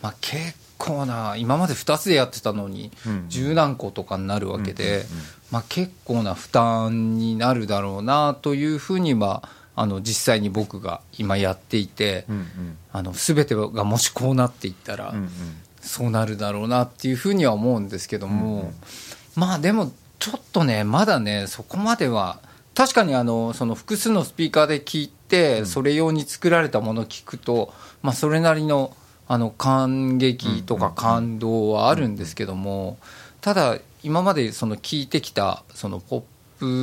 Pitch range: 100-145 Hz